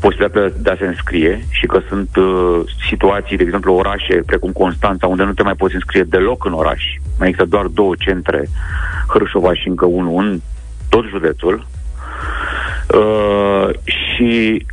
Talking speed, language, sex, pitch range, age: 155 wpm, Romanian, male, 80-120 Hz, 30-49